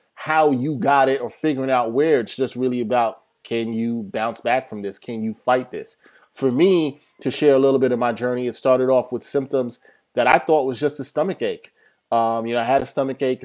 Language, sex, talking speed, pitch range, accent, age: English, male, 240 wpm, 115-140 Hz, American, 20-39